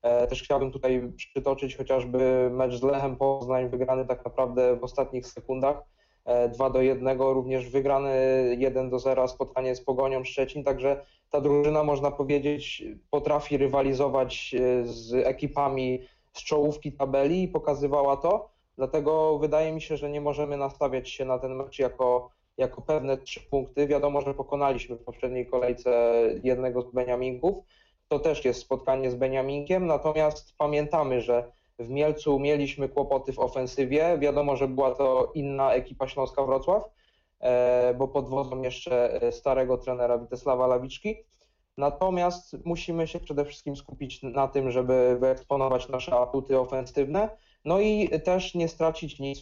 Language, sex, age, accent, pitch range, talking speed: Polish, male, 20-39, native, 130-145 Hz, 145 wpm